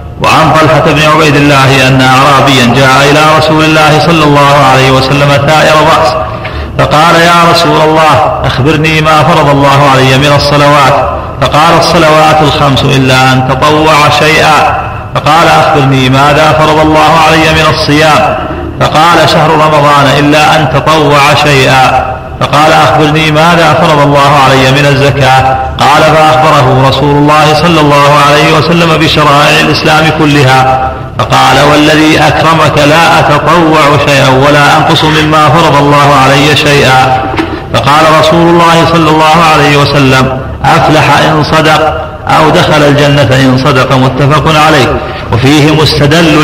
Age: 40-59